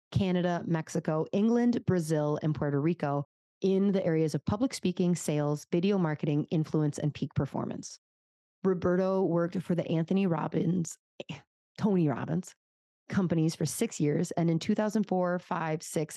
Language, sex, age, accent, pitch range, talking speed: English, female, 30-49, American, 150-185 Hz, 135 wpm